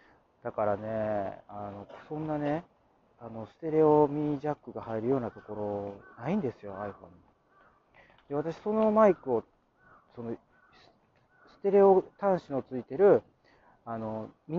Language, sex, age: Japanese, male, 40-59